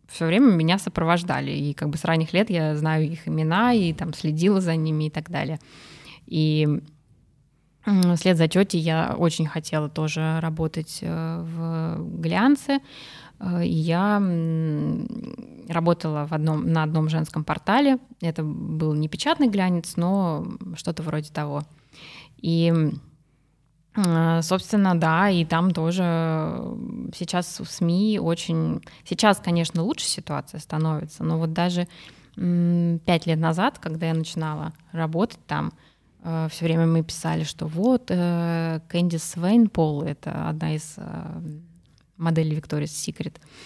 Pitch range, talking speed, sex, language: 155-175 Hz, 120 wpm, female, Russian